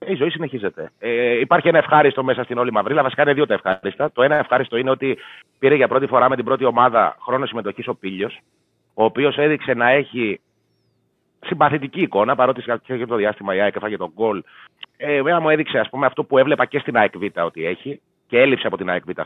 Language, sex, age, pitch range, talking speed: Greek, male, 30-49, 110-145 Hz, 205 wpm